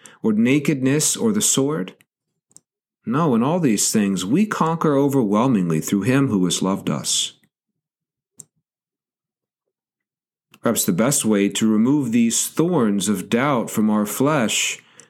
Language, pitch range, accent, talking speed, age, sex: English, 115-165 Hz, American, 125 wpm, 40-59, male